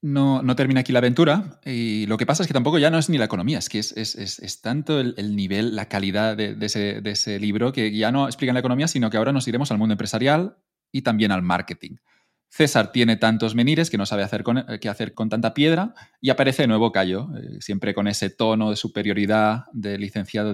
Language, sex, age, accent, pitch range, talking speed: Spanish, male, 20-39, Spanish, 100-125 Hz, 245 wpm